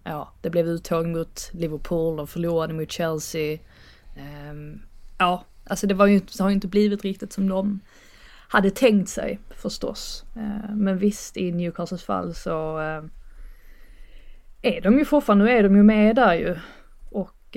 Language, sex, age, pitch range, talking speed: Swedish, female, 20-39, 170-210 Hz, 155 wpm